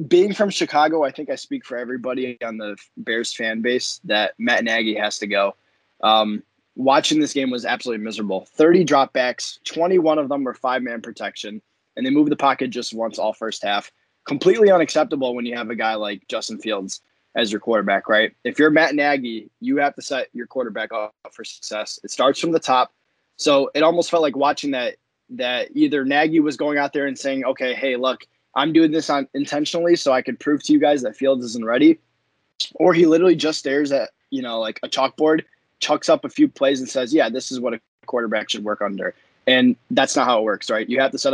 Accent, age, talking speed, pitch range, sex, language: American, 20-39, 220 wpm, 120-155 Hz, male, English